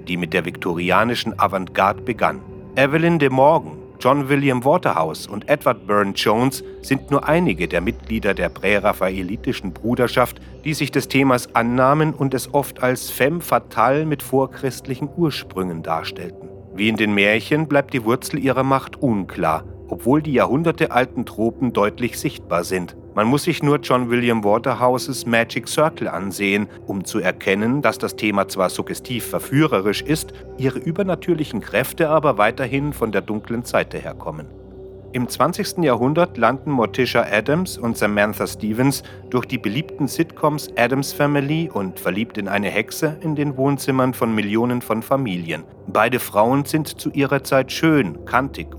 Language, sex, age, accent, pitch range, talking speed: German, male, 40-59, German, 100-140 Hz, 150 wpm